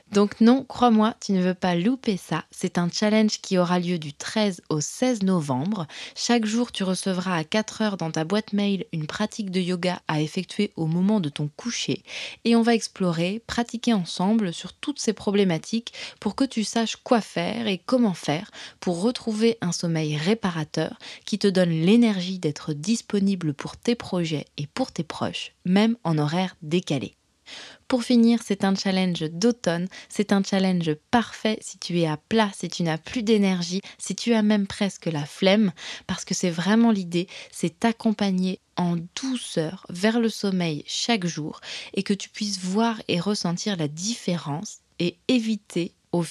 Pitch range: 170-220 Hz